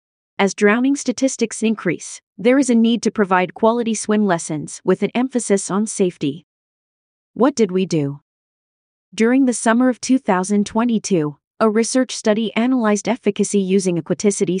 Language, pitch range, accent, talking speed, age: English, 185-225 Hz, American, 140 wpm, 30-49